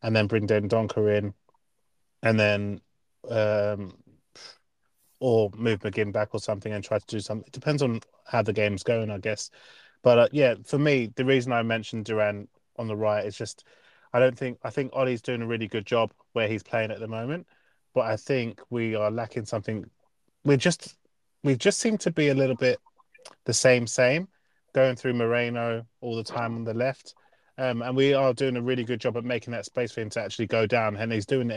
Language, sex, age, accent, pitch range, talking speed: English, male, 20-39, British, 110-125 Hz, 215 wpm